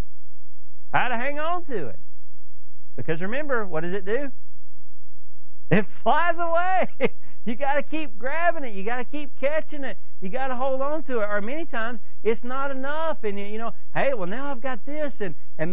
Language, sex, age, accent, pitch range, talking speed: English, male, 40-59, American, 150-245 Hz, 200 wpm